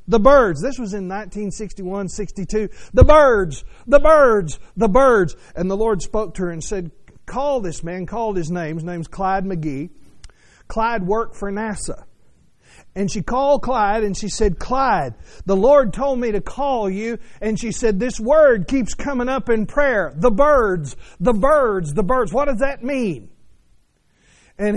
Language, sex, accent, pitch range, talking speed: English, male, American, 190-255 Hz, 170 wpm